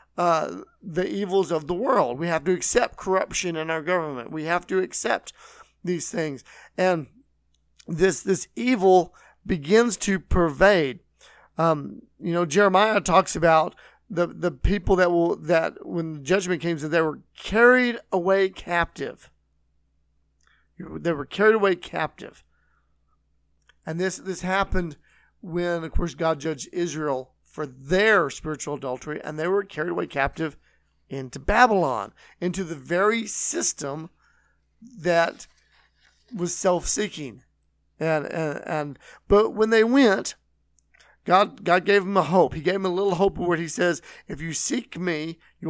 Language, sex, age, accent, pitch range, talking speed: English, male, 40-59, American, 150-190 Hz, 145 wpm